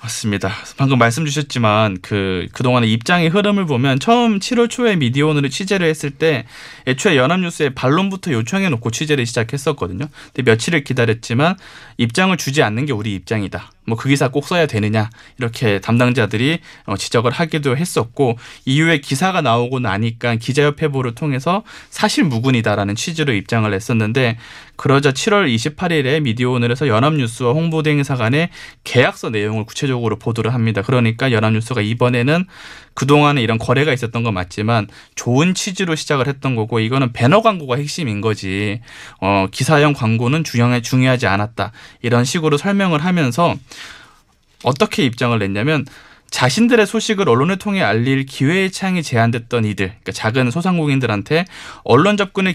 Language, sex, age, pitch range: Korean, male, 20-39, 115-160 Hz